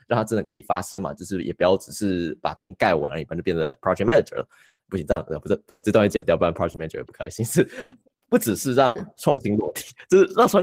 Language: Chinese